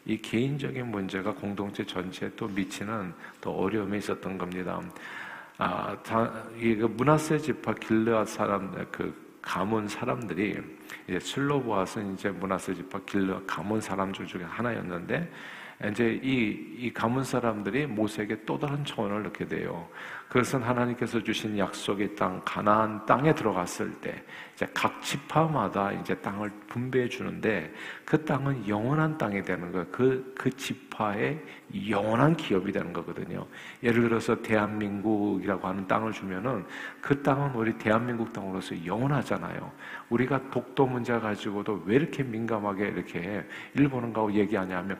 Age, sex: 50-69, male